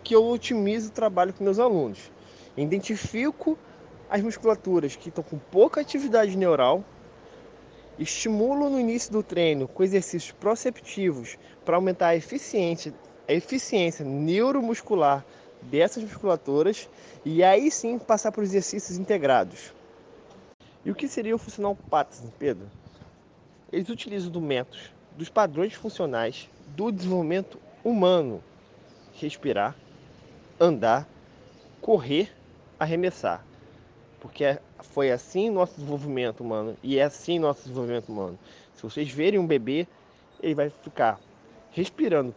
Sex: male